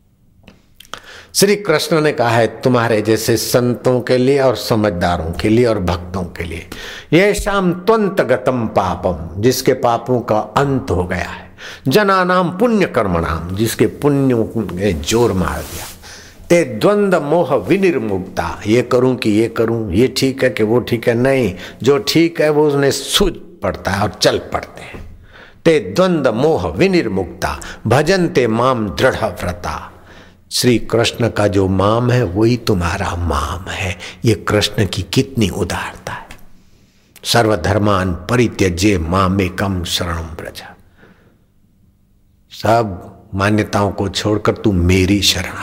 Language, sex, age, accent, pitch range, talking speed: Hindi, male, 60-79, native, 95-120 Hz, 115 wpm